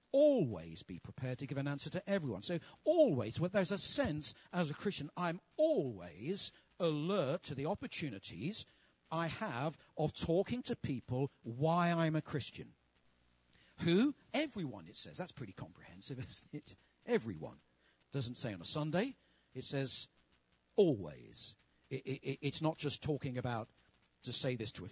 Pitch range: 125-180 Hz